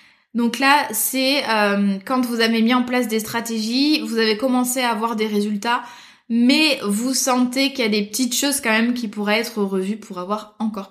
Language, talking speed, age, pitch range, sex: French, 200 wpm, 20-39, 210-255 Hz, female